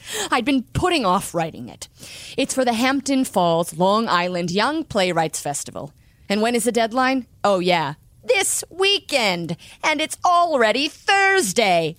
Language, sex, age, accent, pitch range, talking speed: English, female, 30-49, American, 160-275 Hz, 145 wpm